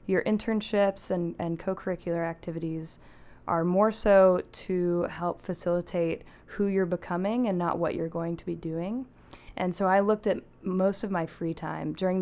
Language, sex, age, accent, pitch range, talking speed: English, female, 10-29, American, 165-185 Hz, 165 wpm